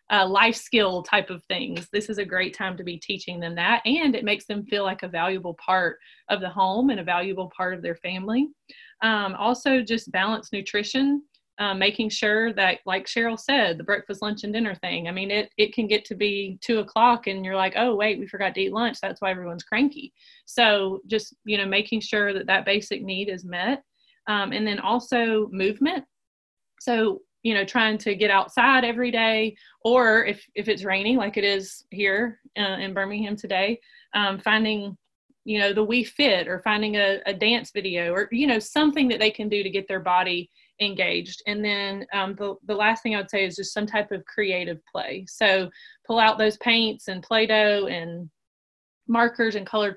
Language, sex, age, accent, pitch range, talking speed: English, female, 30-49, American, 195-230 Hz, 205 wpm